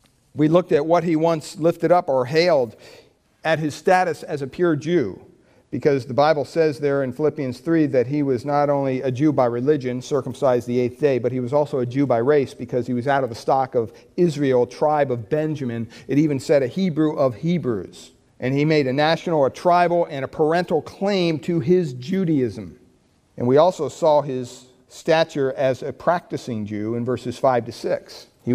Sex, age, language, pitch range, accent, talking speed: male, 50-69, English, 130-170 Hz, American, 200 wpm